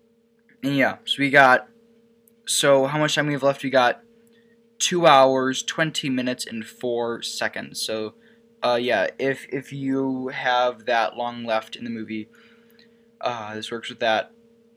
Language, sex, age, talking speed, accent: English, male, 10-29, 155 wpm, American